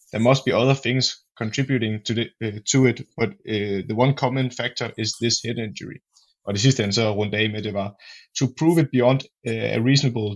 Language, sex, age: Danish, male, 20-39